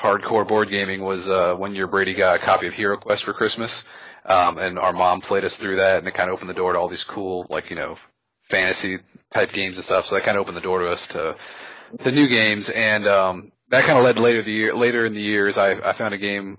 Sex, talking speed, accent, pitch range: male, 270 wpm, American, 95-110 Hz